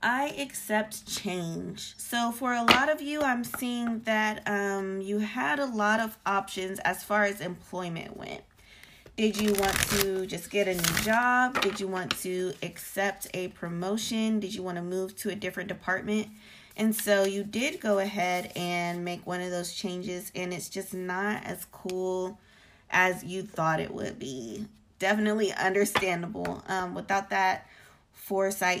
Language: English